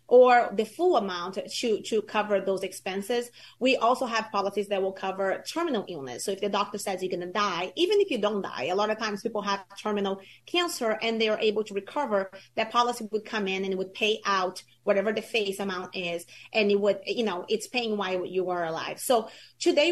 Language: English